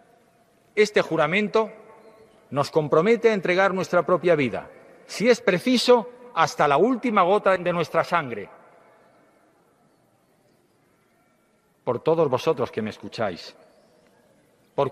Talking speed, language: 105 wpm, Spanish